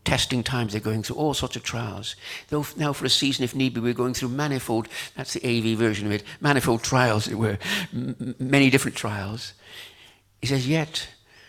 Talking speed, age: 200 wpm, 60-79